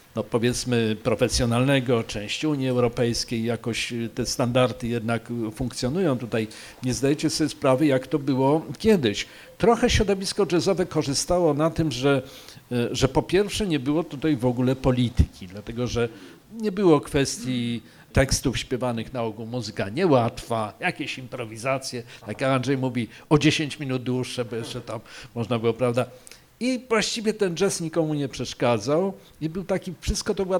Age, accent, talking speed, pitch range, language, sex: 50-69, native, 150 wpm, 125-180 Hz, Polish, male